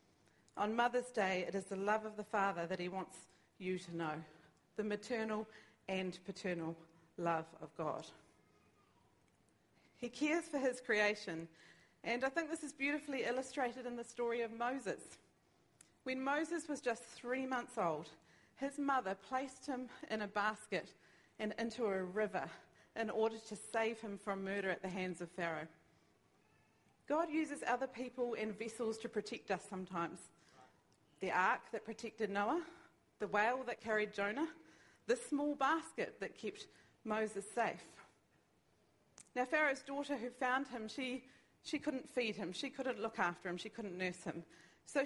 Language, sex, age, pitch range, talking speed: English, female, 40-59, 190-260 Hz, 155 wpm